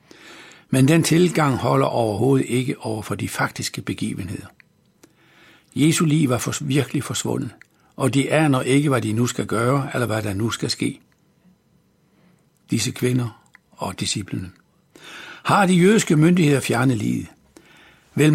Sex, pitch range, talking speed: male, 125-160 Hz, 135 wpm